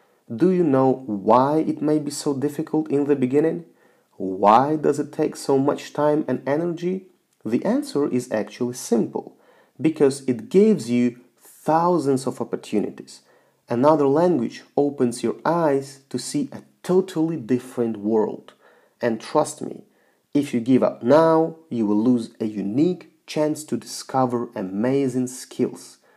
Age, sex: 40-59, male